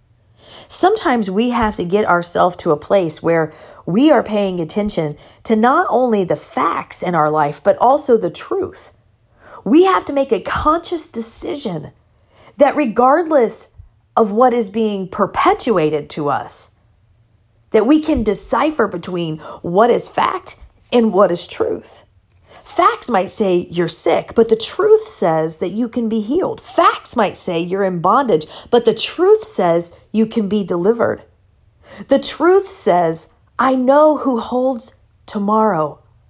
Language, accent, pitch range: English, American, 165-270 Hz